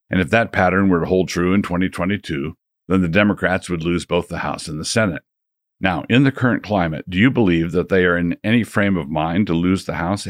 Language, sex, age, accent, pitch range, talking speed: English, male, 50-69, American, 85-100 Hz, 240 wpm